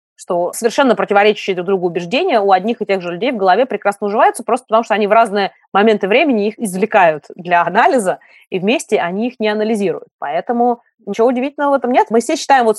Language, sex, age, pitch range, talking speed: Russian, female, 20-39, 195-245 Hz, 205 wpm